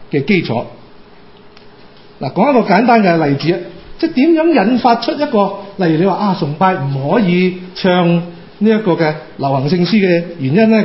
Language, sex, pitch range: Chinese, male, 170-225 Hz